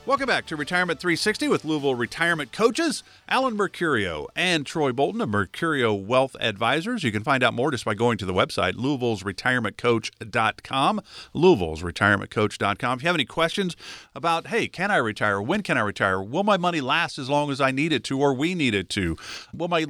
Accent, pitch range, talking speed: American, 110-155 Hz, 195 wpm